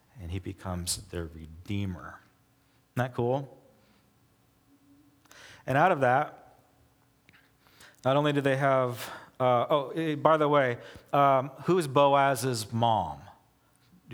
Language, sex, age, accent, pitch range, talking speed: English, male, 40-59, American, 135-185 Hz, 120 wpm